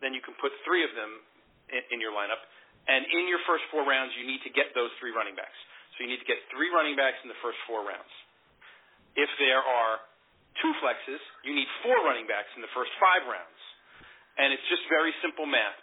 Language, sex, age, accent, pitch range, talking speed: English, male, 40-59, American, 130-170 Hz, 220 wpm